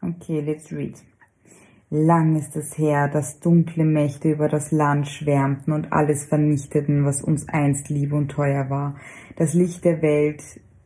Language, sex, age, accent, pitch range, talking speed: German, female, 20-39, German, 145-170 Hz, 155 wpm